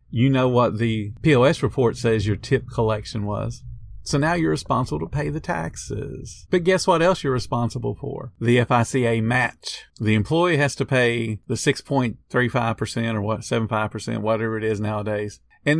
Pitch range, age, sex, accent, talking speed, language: 120-155 Hz, 50-69, male, American, 165 wpm, English